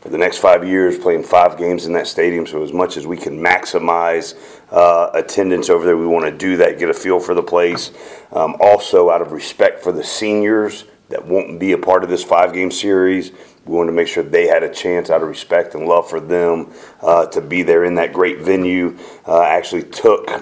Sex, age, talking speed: male, 40-59, 225 wpm